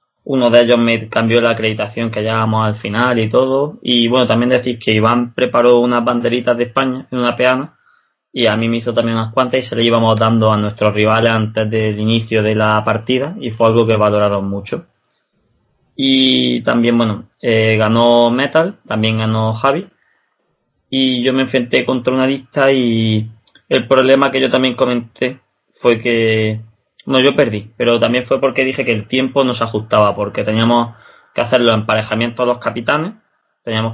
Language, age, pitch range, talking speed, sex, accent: Spanish, 20-39, 110-130 Hz, 185 wpm, male, Spanish